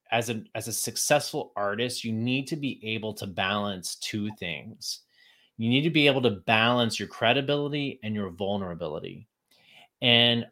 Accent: American